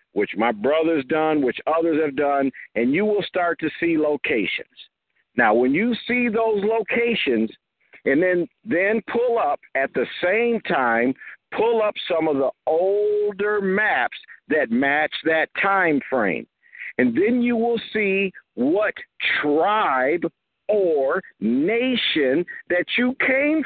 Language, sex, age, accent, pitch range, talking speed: English, male, 50-69, American, 165-230 Hz, 135 wpm